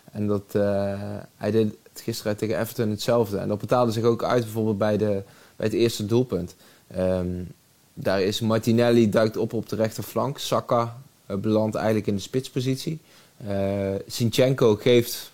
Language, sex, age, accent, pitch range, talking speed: Dutch, male, 20-39, Dutch, 105-115 Hz, 160 wpm